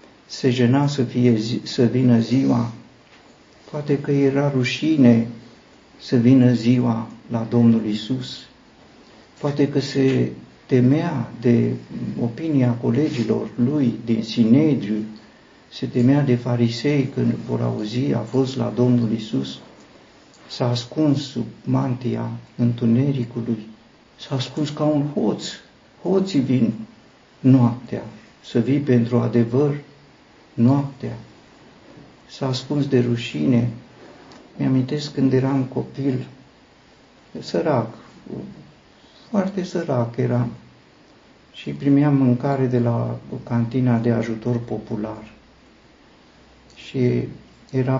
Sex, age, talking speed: male, 50-69, 100 wpm